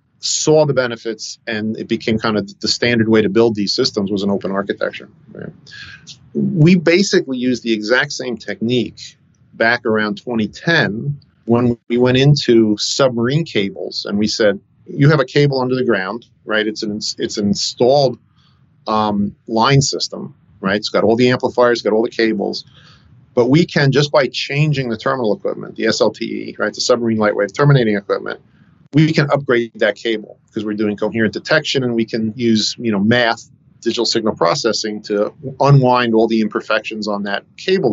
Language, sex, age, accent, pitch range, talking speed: English, male, 40-59, American, 110-140 Hz, 175 wpm